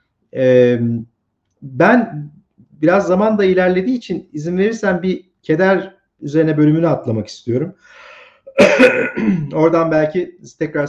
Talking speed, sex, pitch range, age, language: 100 wpm, male, 135-185 Hz, 50-69, Turkish